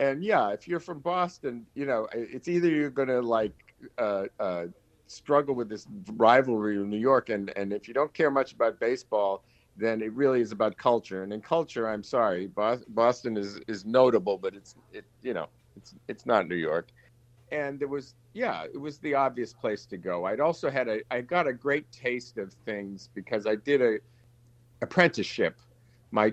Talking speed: 190 wpm